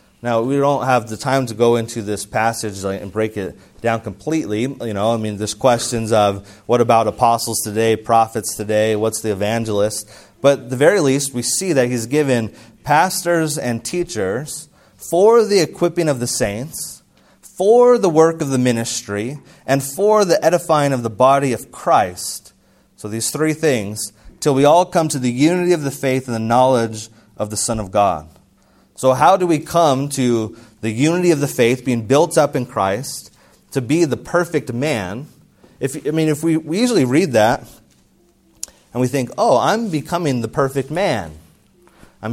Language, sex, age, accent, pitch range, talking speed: English, male, 30-49, American, 110-155 Hz, 180 wpm